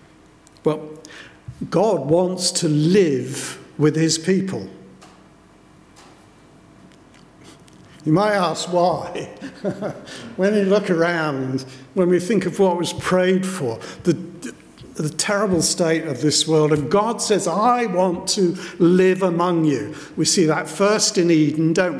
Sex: male